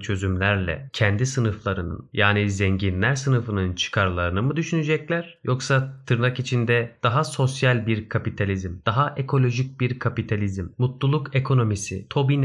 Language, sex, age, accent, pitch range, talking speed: Turkish, male, 30-49, native, 100-130 Hz, 110 wpm